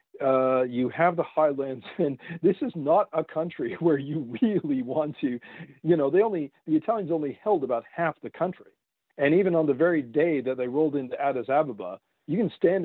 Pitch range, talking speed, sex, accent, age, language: 130-170 Hz, 200 wpm, male, American, 50-69, Swedish